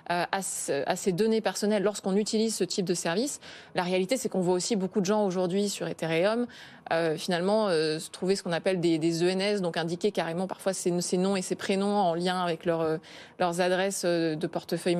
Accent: French